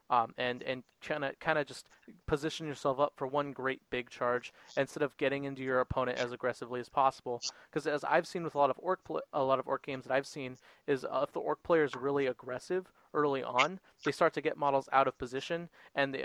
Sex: male